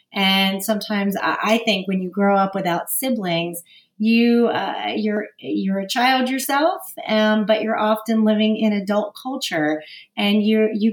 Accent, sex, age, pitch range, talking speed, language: American, female, 30-49, 185-225 Hz, 155 wpm, English